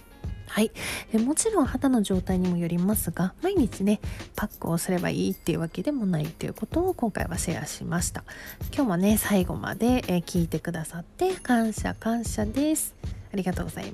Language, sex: Japanese, female